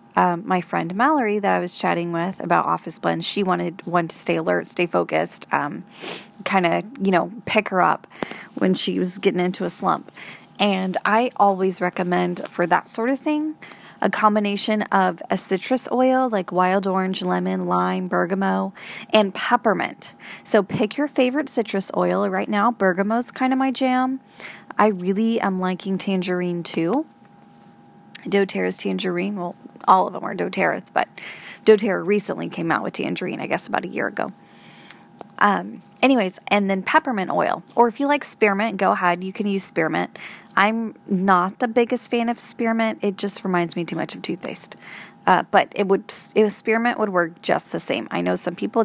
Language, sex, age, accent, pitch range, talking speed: English, female, 20-39, American, 180-225 Hz, 175 wpm